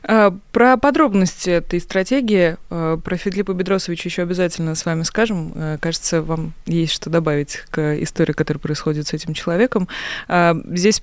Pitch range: 165-220 Hz